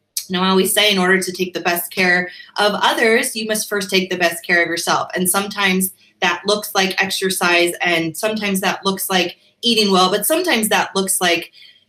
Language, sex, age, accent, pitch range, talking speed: English, female, 20-39, American, 175-210 Hz, 205 wpm